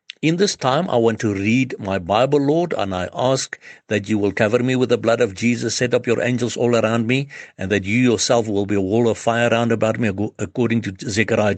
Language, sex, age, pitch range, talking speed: English, male, 60-79, 105-130 Hz, 240 wpm